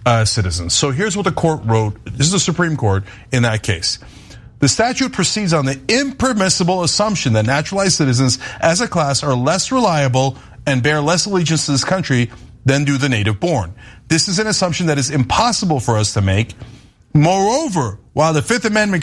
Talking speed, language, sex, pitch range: 190 wpm, English, male, 125-185 Hz